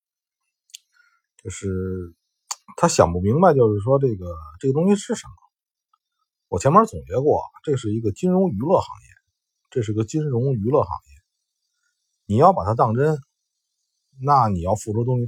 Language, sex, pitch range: Chinese, male, 100-140 Hz